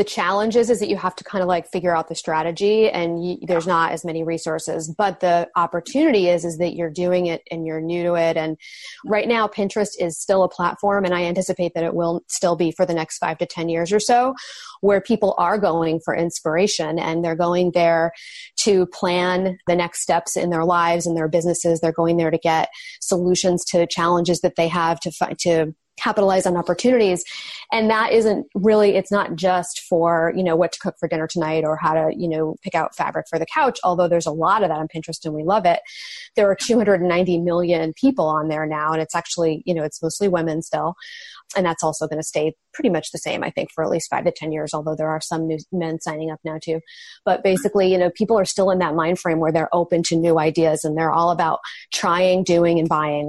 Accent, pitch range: American, 165-190 Hz